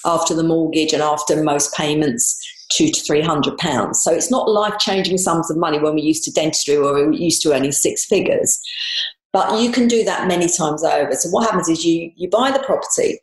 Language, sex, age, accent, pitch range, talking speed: English, female, 40-59, British, 155-250 Hz, 220 wpm